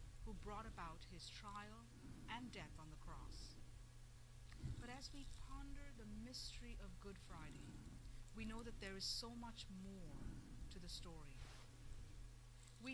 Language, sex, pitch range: Spanish, female, 120-135 Hz